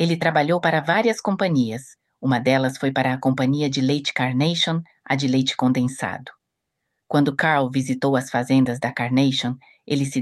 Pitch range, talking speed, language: 130-155 Hz, 160 wpm, Portuguese